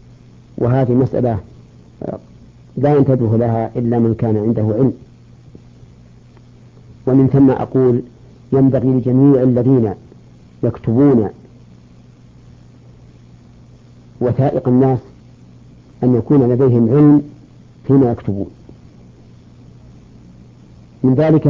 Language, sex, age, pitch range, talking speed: Arabic, female, 50-69, 115-140 Hz, 75 wpm